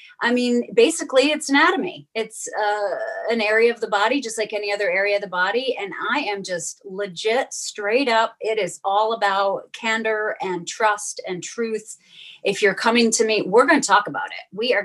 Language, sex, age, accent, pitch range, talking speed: English, female, 30-49, American, 185-245 Hz, 195 wpm